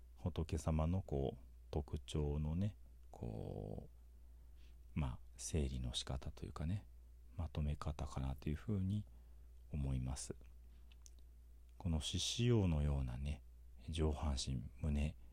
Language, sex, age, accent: Japanese, male, 40-59, native